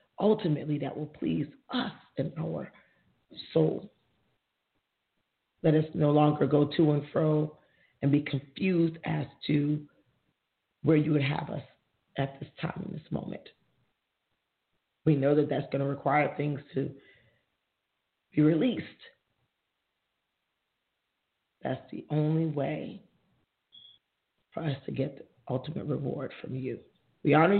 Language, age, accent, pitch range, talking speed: English, 40-59, American, 145-185 Hz, 125 wpm